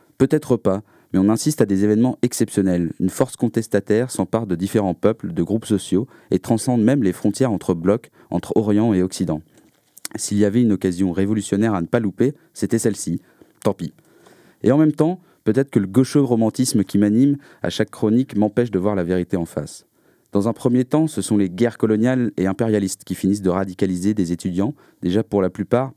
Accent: French